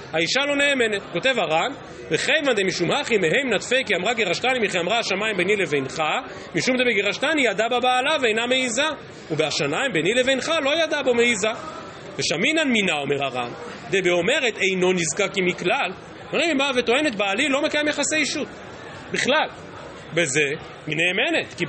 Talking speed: 145 wpm